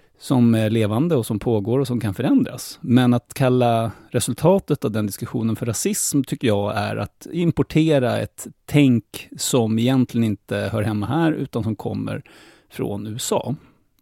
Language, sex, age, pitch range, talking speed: English, male, 30-49, 110-140 Hz, 160 wpm